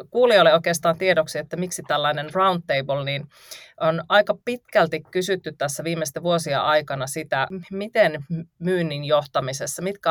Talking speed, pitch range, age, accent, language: 125 wpm, 140-180 Hz, 30-49, native, Finnish